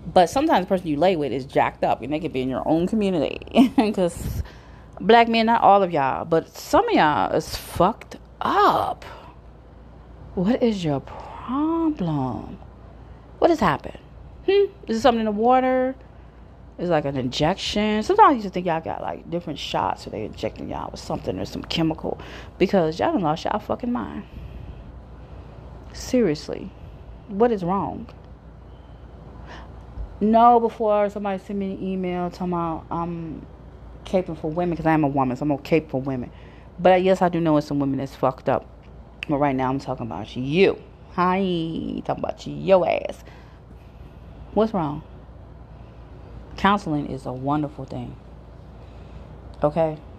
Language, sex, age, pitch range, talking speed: English, female, 30-49, 145-210 Hz, 160 wpm